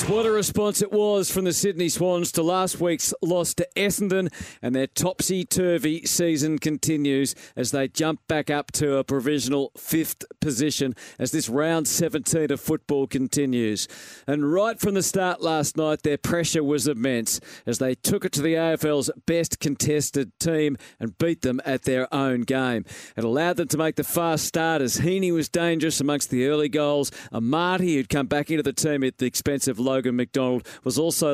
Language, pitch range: English, 130-165 Hz